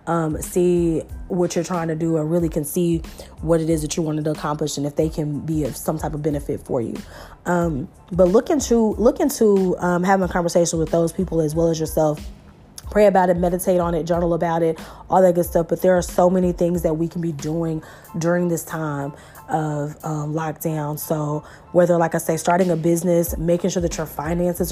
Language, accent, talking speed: English, American, 220 wpm